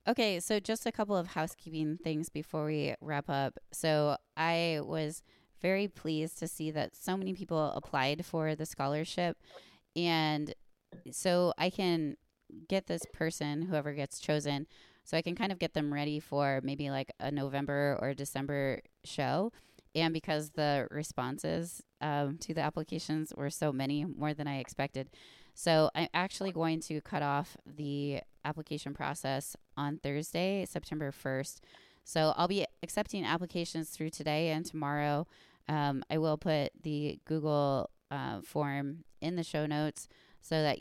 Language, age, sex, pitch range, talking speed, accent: English, 20-39, female, 140-160 Hz, 155 wpm, American